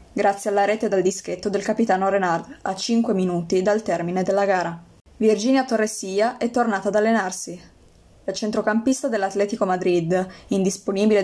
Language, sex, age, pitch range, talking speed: Italian, female, 20-39, 185-215 Hz, 140 wpm